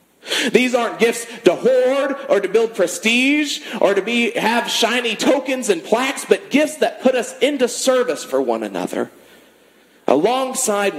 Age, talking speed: 40-59, 155 wpm